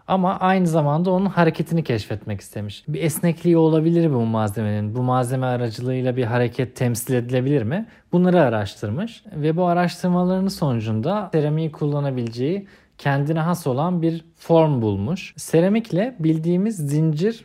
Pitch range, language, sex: 125-175 Hz, Turkish, male